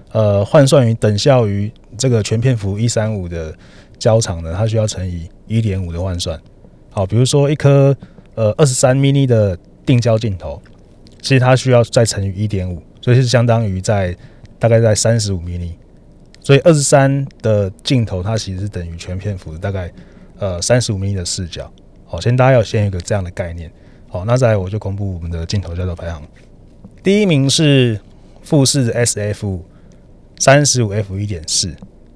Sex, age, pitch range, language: male, 20-39, 95-130 Hz, Chinese